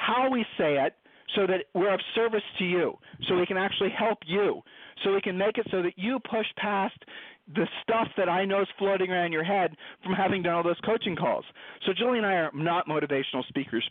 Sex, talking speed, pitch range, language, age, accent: male, 220 wpm, 150-195 Hz, English, 40-59, American